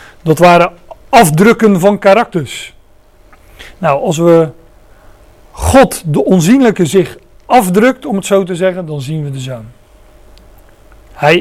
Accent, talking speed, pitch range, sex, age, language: Dutch, 125 wpm, 120-185 Hz, male, 40-59, Dutch